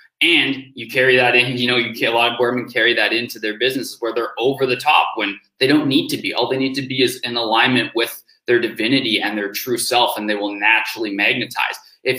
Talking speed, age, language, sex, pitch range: 240 wpm, 20-39, English, male, 110-130 Hz